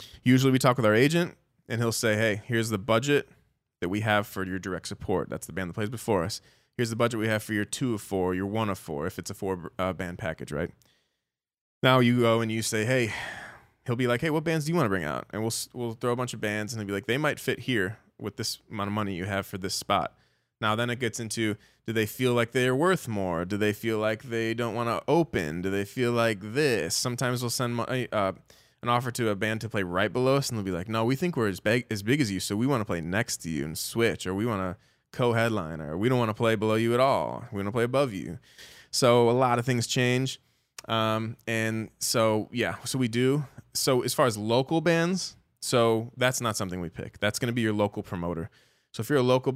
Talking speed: 265 wpm